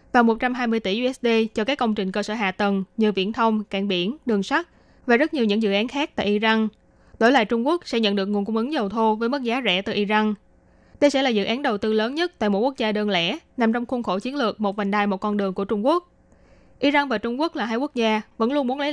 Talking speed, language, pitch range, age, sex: 280 wpm, Vietnamese, 210-255 Hz, 20-39, female